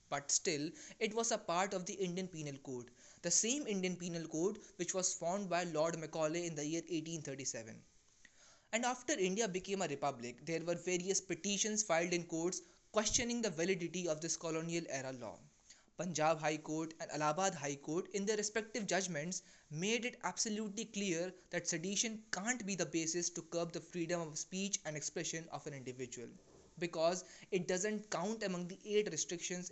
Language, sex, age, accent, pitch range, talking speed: English, male, 20-39, Indian, 155-190 Hz, 175 wpm